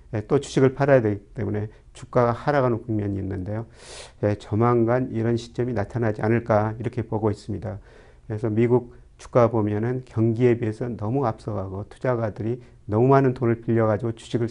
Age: 40-59